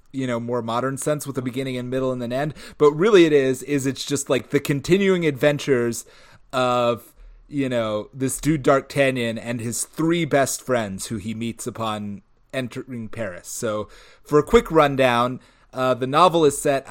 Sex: male